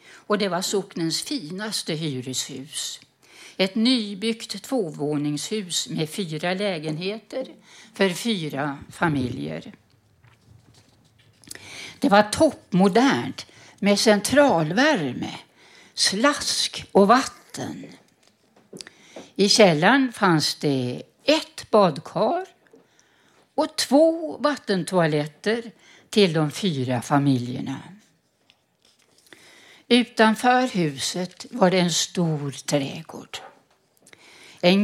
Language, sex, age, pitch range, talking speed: Swedish, female, 60-79, 150-215 Hz, 75 wpm